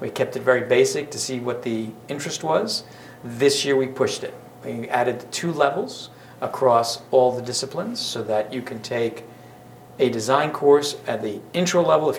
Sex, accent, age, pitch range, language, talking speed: male, American, 50-69, 115-140 Hz, English, 180 wpm